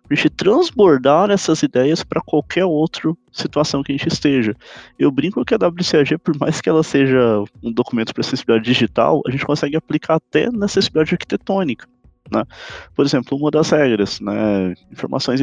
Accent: Brazilian